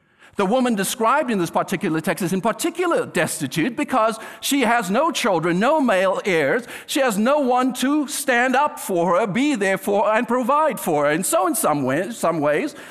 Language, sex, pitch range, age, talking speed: English, male, 195-265 Hz, 50-69, 200 wpm